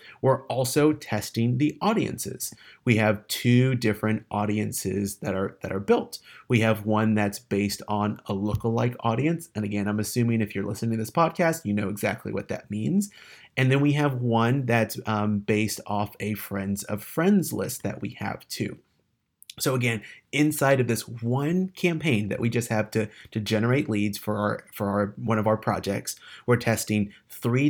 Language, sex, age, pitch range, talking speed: English, male, 30-49, 105-125 Hz, 180 wpm